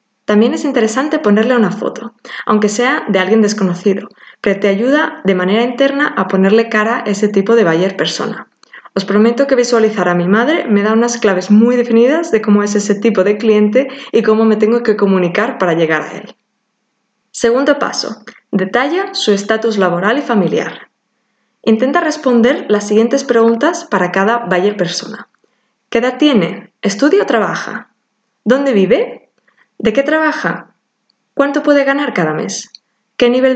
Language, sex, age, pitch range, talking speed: Spanish, female, 20-39, 205-255 Hz, 165 wpm